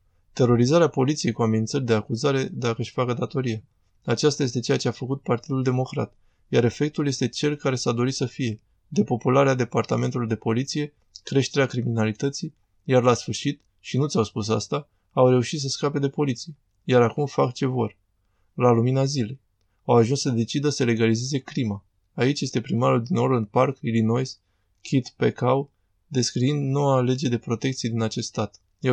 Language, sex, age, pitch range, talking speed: Romanian, male, 20-39, 115-135 Hz, 165 wpm